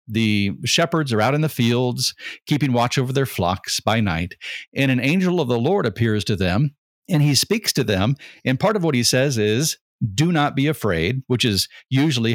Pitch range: 115-145 Hz